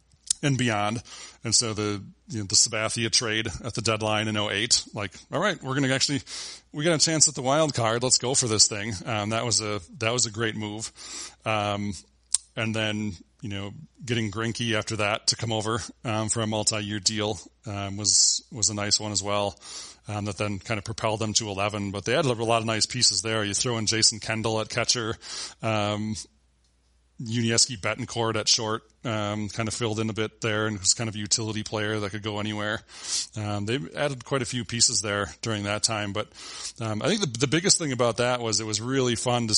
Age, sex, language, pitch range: 30-49, male, English, 105-115 Hz